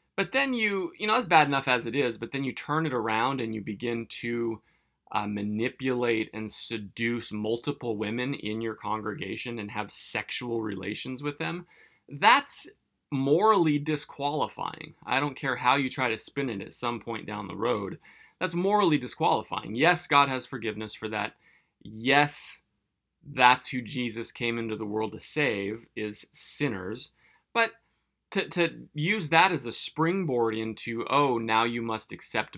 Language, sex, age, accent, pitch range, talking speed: English, male, 20-39, American, 105-135 Hz, 165 wpm